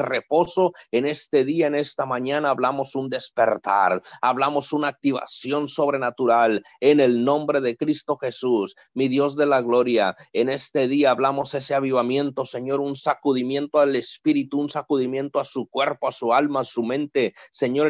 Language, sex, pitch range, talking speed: Spanish, male, 130-150 Hz, 160 wpm